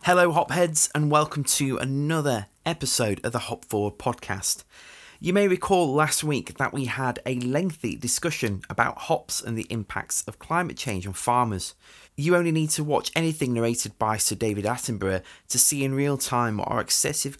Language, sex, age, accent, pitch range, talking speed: English, male, 20-39, British, 100-145 Hz, 180 wpm